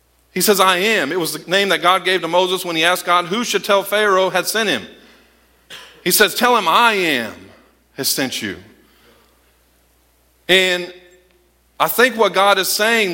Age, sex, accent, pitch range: 40-59, male, American, 180-235 Hz